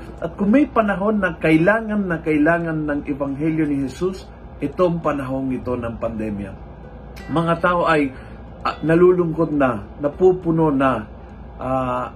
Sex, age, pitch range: male, 50-69, 125-170 Hz